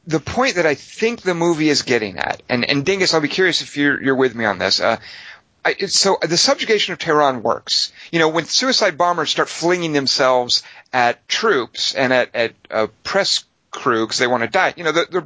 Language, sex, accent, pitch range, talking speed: English, male, American, 125-165 Hz, 215 wpm